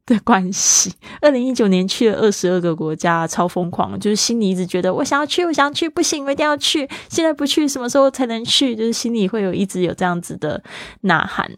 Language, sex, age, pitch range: Chinese, female, 20-39, 180-225 Hz